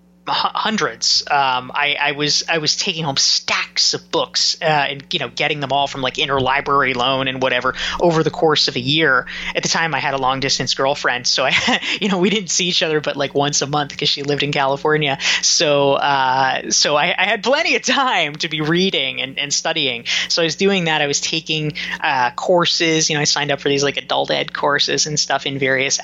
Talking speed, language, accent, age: 230 wpm, English, American, 20-39